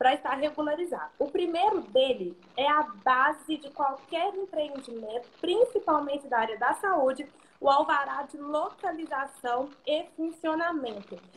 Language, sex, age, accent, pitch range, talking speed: Portuguese, female, 20-39, Brazilian, 260-325 Hz, 120 wpm